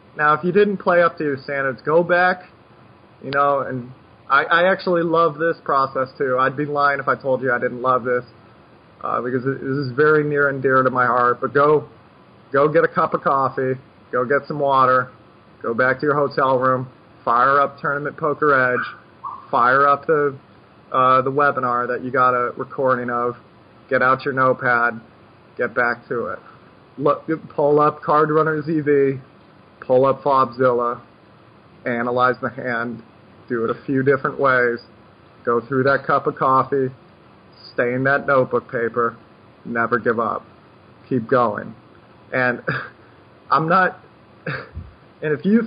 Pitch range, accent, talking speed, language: 125-150 Hz, American, 165 wpm, English